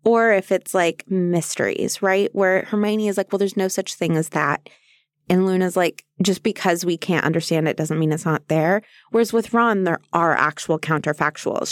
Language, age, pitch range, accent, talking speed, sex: English, 20-39, 180-230 Hz, American, 195 wpm, female